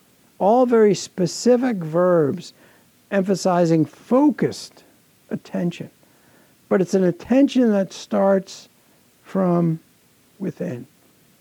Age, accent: 60-79, American